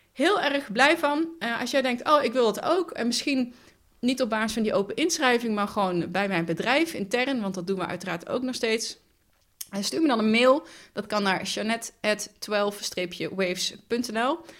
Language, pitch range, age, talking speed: Dutch, 180-245 Hz, 20-39, 195 wpm